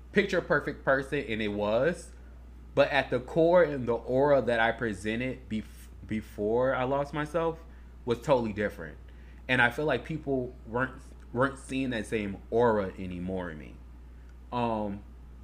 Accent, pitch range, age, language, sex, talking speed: American, 85-125 Hz, 20-39, English, male, 150 wpm